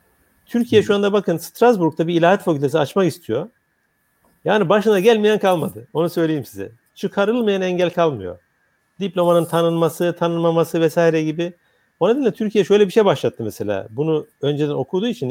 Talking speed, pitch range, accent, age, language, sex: 145 wpm, 145-195 Hz, native, 50-69, Turkish, male